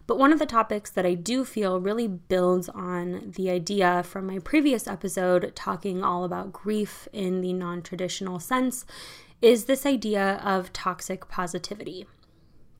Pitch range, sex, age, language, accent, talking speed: 180-215 Hz, female, 20-39, English, American, 155 wpm